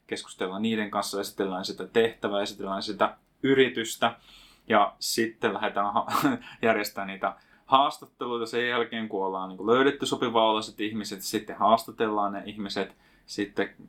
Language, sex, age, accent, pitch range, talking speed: Finnish, male, 20-39, native, 95-115 Hz, 120 wpm